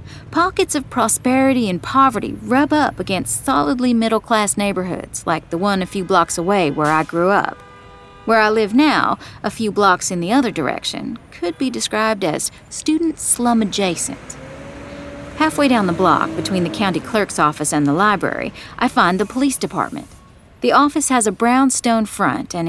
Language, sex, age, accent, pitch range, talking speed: English, female, 40-59, American, 165-230 Hz, 170 wpm